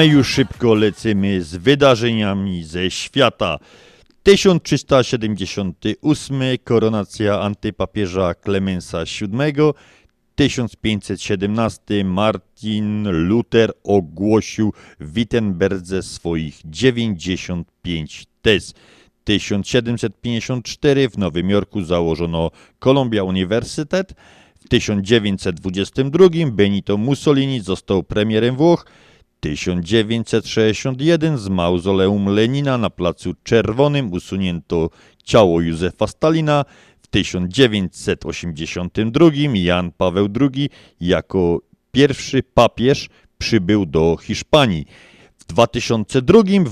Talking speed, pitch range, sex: 80 wpm, 95-130 Hz, male